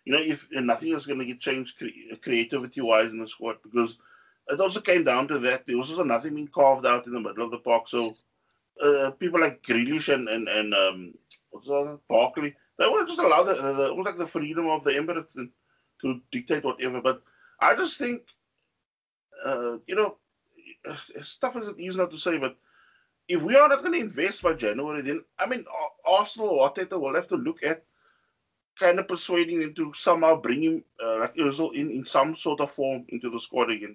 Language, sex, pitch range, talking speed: English, male, 125-195 Hz, 200 wpm